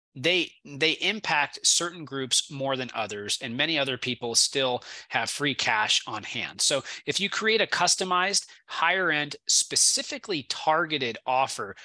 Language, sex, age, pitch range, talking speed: English, male, 30-49, 130-180 Hz, 145 wpm